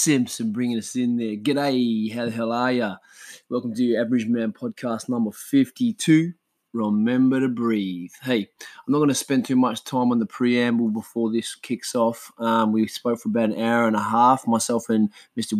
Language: English